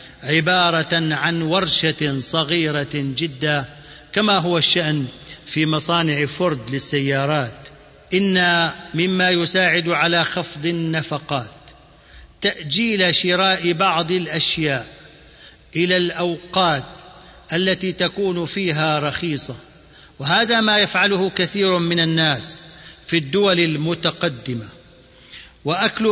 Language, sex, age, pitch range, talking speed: Arabic, male, 50-69, 150-185 Hz, 85 wpm